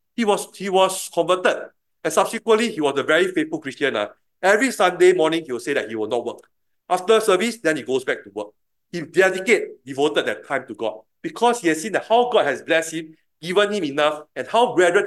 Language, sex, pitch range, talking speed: English, male, 150-230 Hz, 210 wpm